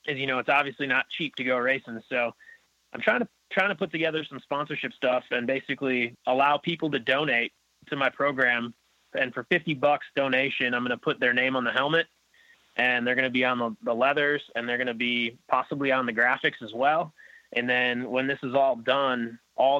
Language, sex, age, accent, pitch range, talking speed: English, male, 20-39, American, 120-145 Hz, 220 wpm